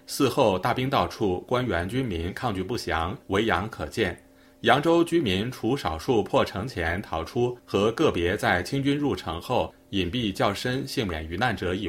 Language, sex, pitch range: Chinese, male, 90-130 Hz